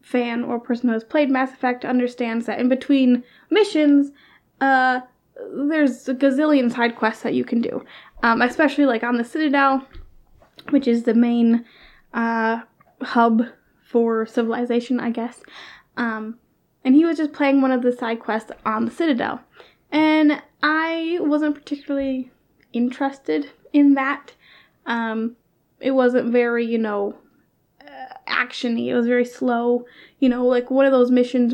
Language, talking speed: English, 145 wpm